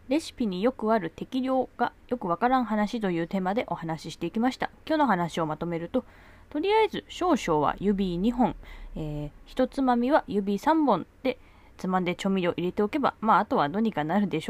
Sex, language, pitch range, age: female, Japanese, 165-245 Hz, 20-39